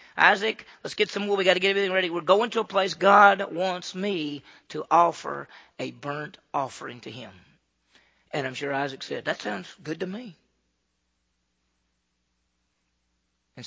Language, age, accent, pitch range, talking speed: English, 40-59, American, 120-185 Hz, 160 wpm